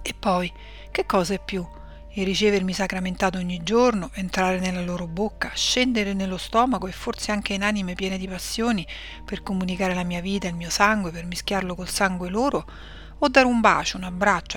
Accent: native